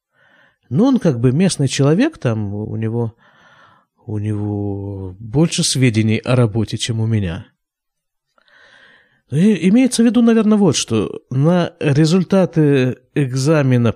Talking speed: 110 wpm